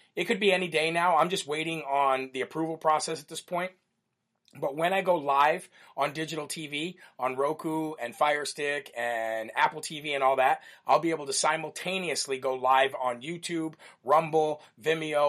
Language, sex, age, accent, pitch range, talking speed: English, male, 40-59, American, 140-180 Hz, 180 wpm